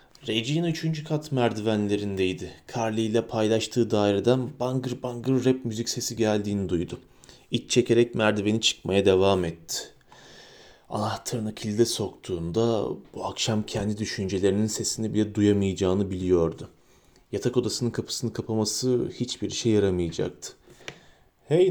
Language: Turkish